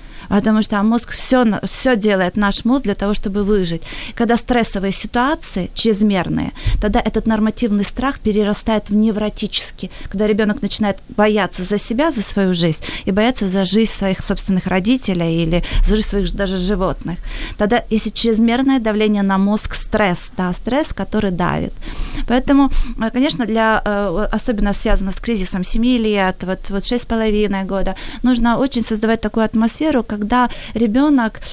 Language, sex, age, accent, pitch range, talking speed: Ukrainian, female, 30-49, native, 200-235 Hz, 145 wpm